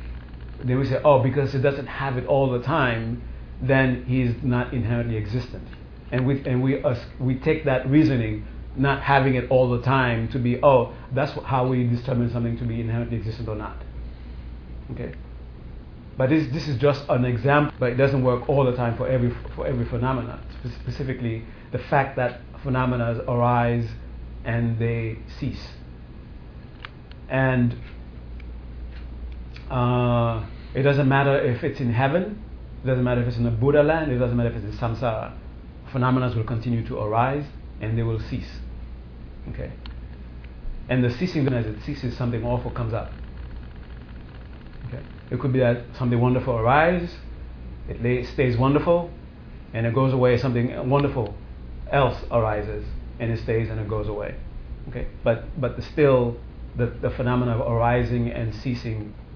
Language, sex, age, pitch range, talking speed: English, male, 50-69, 105-130 Hz, 165 wpm